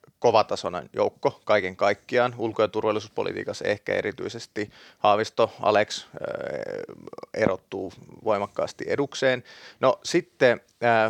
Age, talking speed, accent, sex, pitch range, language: 30-49, 95 wpm, native, male, 105-135 Hz, Finnish